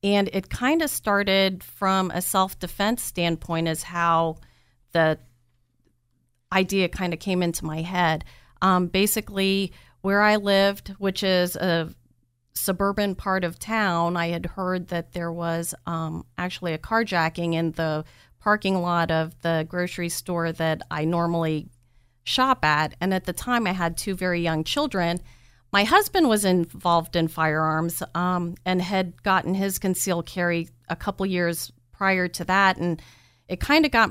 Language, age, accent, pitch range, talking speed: English, 40-59, American, 165-195 Hz, 155 wpm